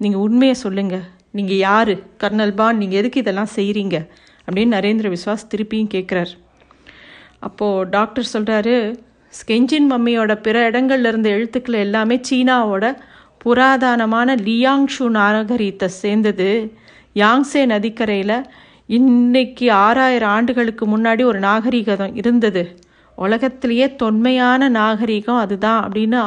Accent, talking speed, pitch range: native, 100 wpm, 205-245 Hz